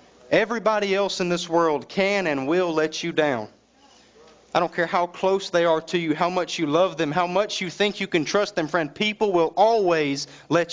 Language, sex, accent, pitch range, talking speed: English, male, American, 150-185 Hz, 215 wpm